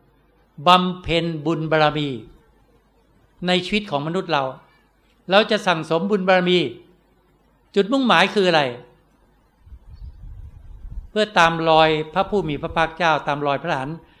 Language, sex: Thai, male